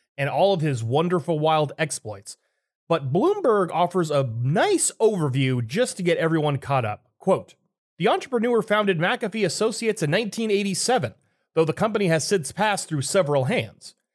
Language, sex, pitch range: English, male, 140-200 Hz